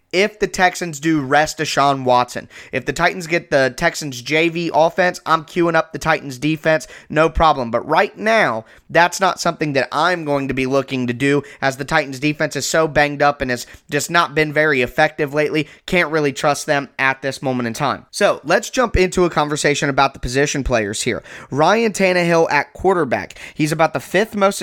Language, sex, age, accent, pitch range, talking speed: English, male, 20-39, American, 140-175 Hz, 200 wpm